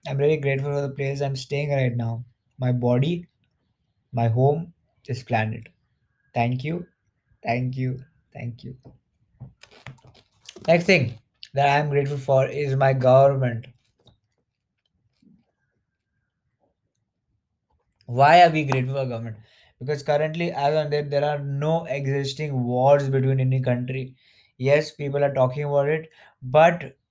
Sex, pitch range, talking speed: male, 120-140 Hz, 125 wpm